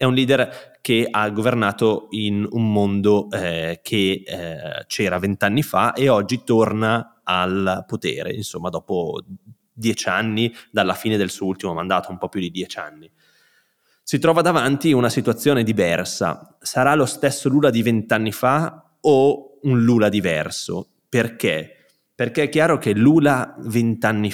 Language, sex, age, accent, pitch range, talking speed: Italian, male, 20-39, native, 100-120 Hz, 150 wpm